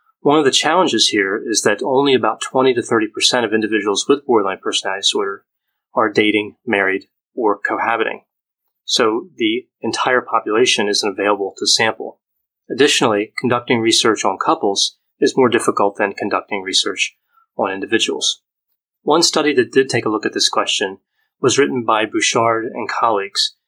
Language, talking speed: English, 155 wpm